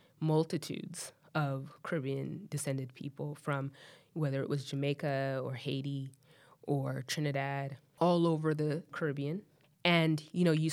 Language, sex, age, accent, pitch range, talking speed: English, female, 20-39, American, 140-160 Hz, 125 wpm